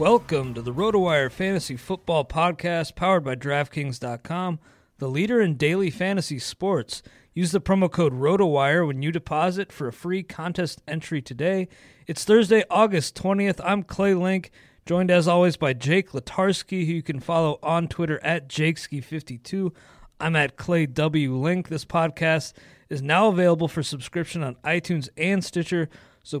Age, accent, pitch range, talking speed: 30-49, American, 140-180 Hz, 155 wpm